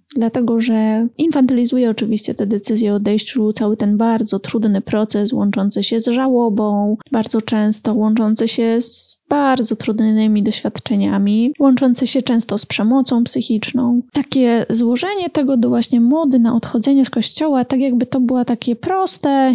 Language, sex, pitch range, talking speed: Polish, female, 225-255 Hz, 145 wpm